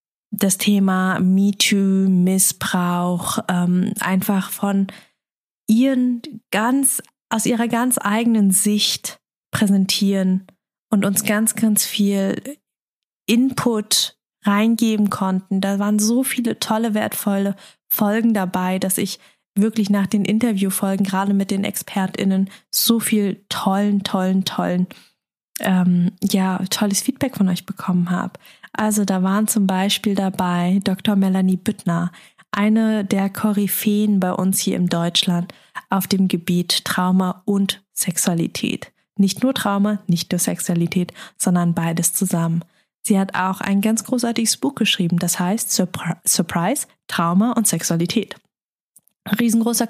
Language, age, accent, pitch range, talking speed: German, 20-39, German, 185-215 Hz, 120 wpm